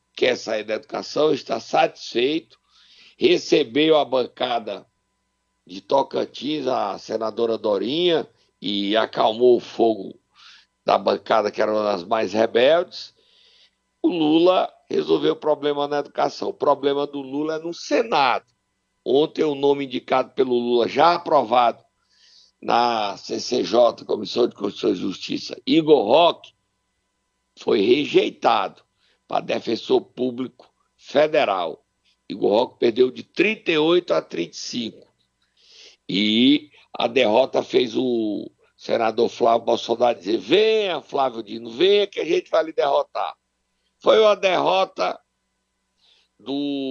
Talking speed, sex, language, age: 120 wpm, male, Portuguese, 60-79